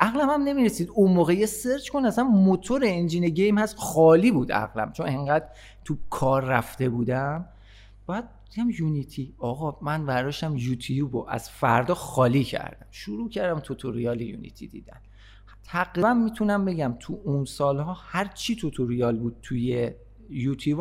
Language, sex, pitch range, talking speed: Persian, male, 115-170 Hz, 140 wpm